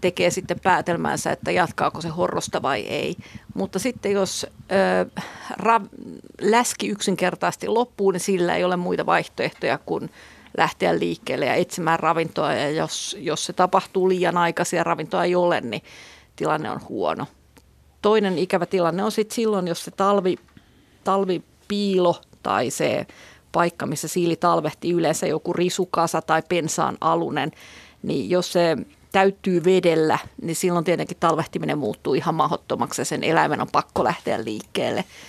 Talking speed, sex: 145 wpm, female